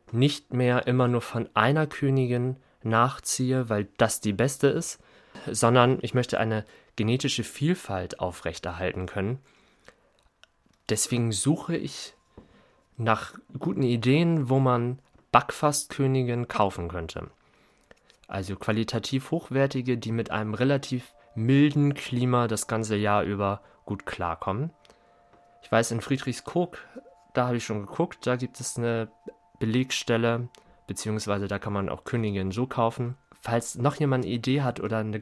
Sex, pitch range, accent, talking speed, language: male, 110-135 Hz, German, 130 wpm, German